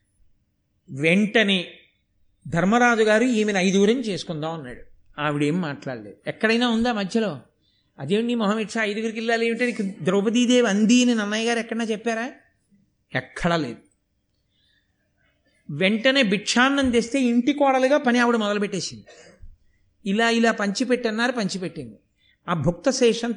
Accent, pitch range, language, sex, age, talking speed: native, 165-230 Hz, Telugu, male, 50-69, 110 wpm